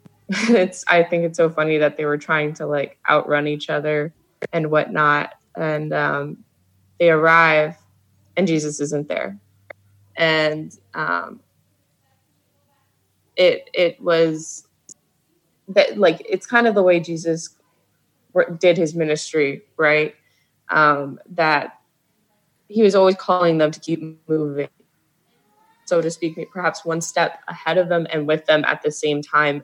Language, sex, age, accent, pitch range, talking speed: English, female, 20-39, American, 150-170 Hz, 140 wpm